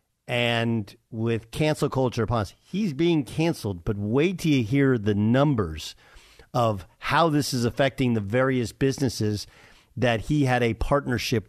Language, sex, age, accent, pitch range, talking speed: English, male, 50-69, American, 110-145 Hz, 150 wpm